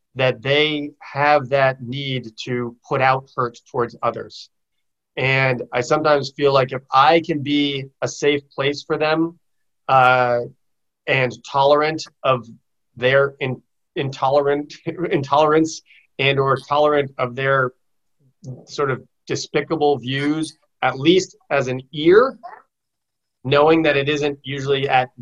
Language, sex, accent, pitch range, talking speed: English, male, American, 130-145 Hz, 125 wpm